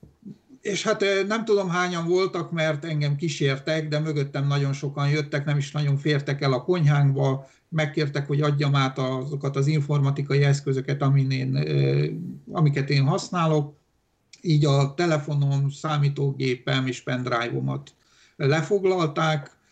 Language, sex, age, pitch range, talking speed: Hungarian, male, 50-69, 135-150 Hz, 120 wpm